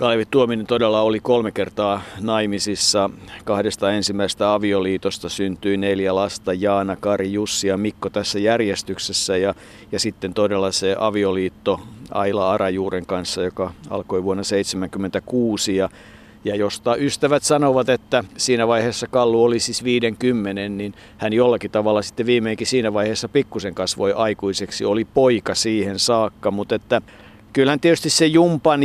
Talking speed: 135 wpm